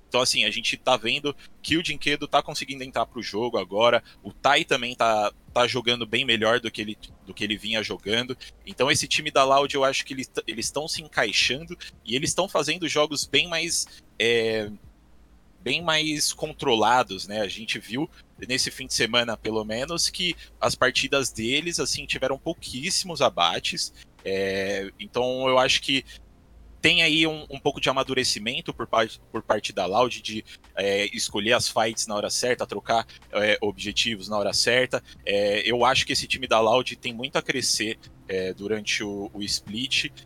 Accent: Brazilian